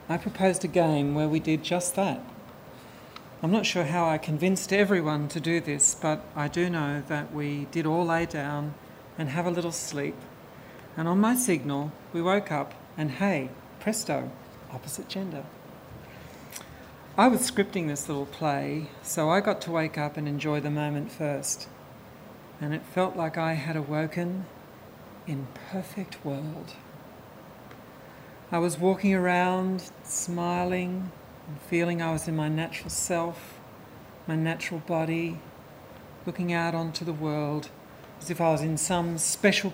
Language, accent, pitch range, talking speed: English, Australian, 150-175 Hz, 150 wpm